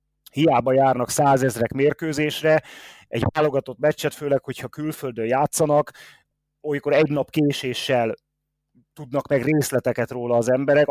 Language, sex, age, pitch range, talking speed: Hungarian, male, 30-49, 120-150 Hz, 115 wpm